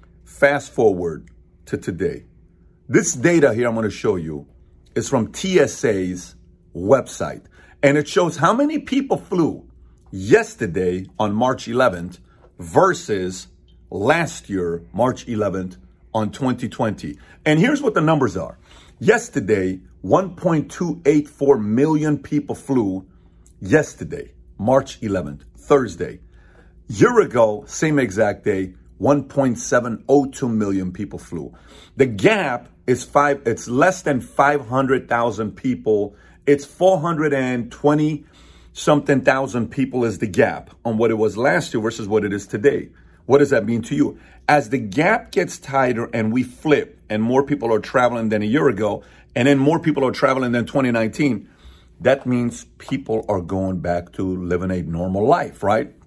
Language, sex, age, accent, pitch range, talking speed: English, male, 50-69, American, 95-140 Hz, 140 wpm